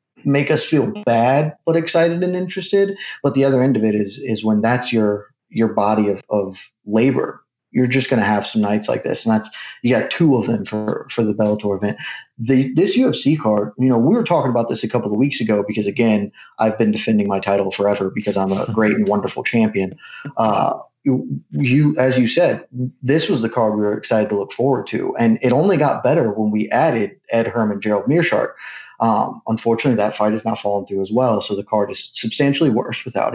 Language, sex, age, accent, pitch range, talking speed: English, male, 30-49, American, 105-135 Hz, 220 wpm